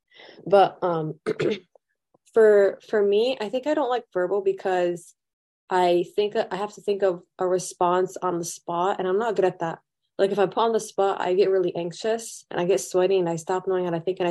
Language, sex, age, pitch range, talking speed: English, female, 20-39, 175-200 Hz, 225 wpm